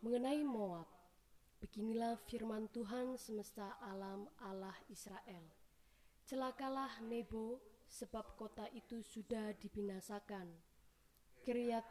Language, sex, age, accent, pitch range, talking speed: Indonesian, female, 20-39, native, 205-235 Hz, 85 wpm